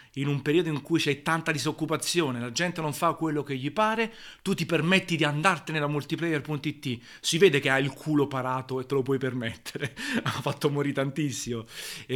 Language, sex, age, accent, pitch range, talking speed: Italian, male, 30-49, native, 120-145 Hz, 195 wpm